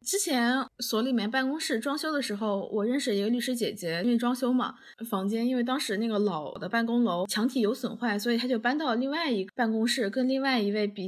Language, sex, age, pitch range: Chinese, female, 20-39, 215-280 Hz